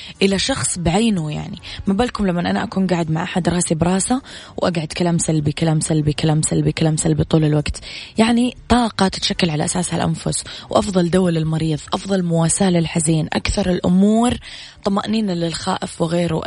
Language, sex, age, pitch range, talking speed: Arabic, female, 20-39, 160-195 Hz, 155 wpm